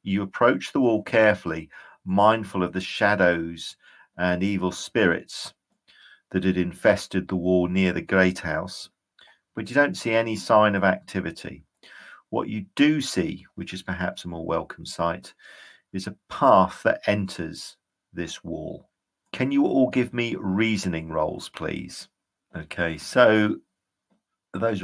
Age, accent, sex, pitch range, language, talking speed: 50-69, British, male, 90-110 Hz, English, 140 wpm